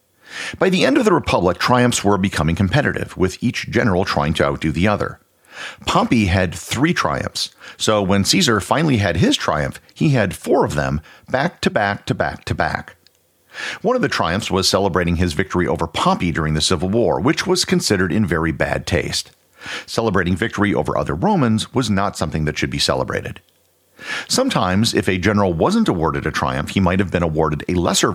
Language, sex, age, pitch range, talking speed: English, male, 50-69, 80-105 Hz, 190 wpm